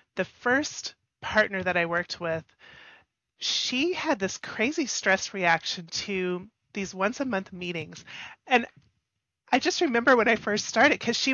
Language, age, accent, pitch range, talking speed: English, 30-49, American, 185-230 Hz, 155 wpm